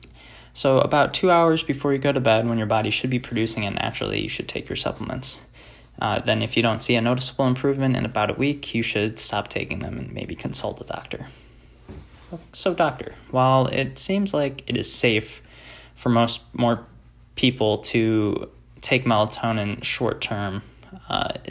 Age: 20-39